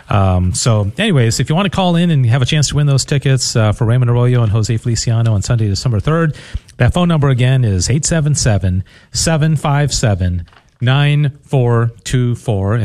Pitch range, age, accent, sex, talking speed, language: 110-150 Hz, 40-59, American, male, 160 wpm, English